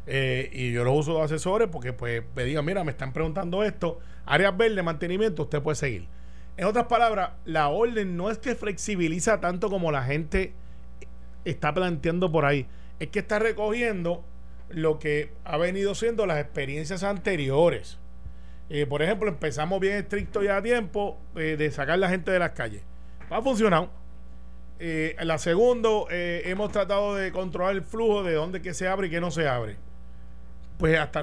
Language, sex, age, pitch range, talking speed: Spanish, male, 30-49, 130-190 Hz, 180 wpm